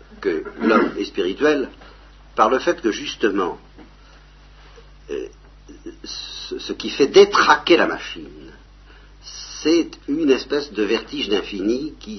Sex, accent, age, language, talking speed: male, French, 50-69, French, 120 wpm